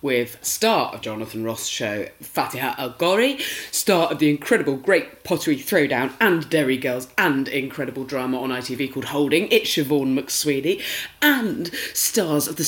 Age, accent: 30-49, British